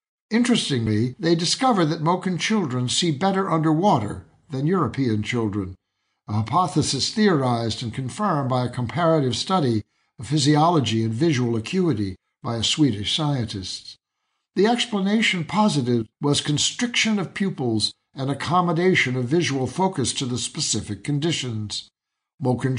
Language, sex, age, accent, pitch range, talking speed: English, male, 60-79, American, 115-170 Hz, 125 wpm